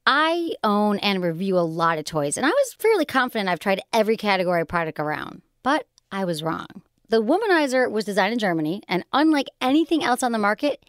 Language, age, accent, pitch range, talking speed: English, 30-49, American, 190-270 Hz, 205 wpm